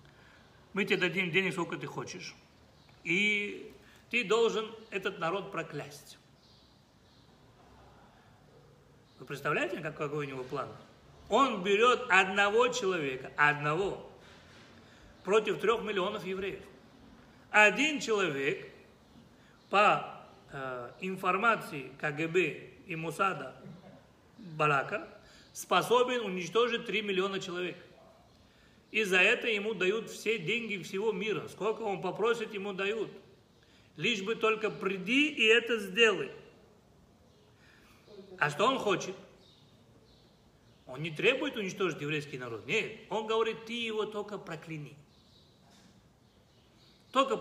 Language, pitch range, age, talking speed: Russian, 155-220 Hz, 40-59, 100 wpm